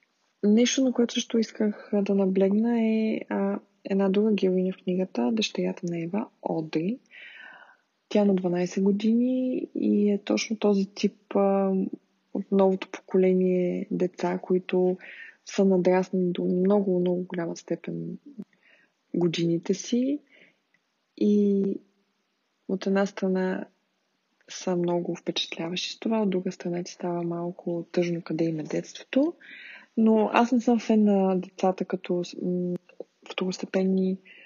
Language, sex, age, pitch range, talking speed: Bulgarian, female, 20-39, 180-215 Hz, 120 wpm